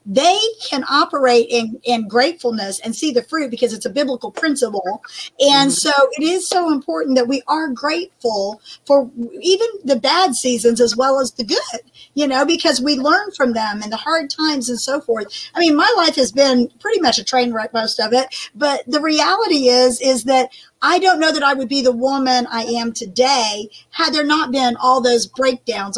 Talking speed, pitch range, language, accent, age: 205 wpm, 245-310 Hz, English, American, 50-69